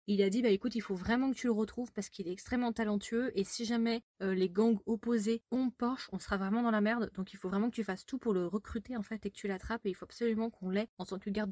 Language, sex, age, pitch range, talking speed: French, female, 20-39, 195-235 Hz, 305 wpm